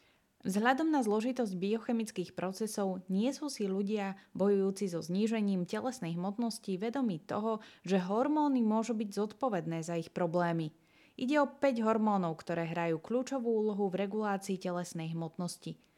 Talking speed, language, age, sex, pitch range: 135 wpm, Slovak, 20-39, female, 180-225 Hz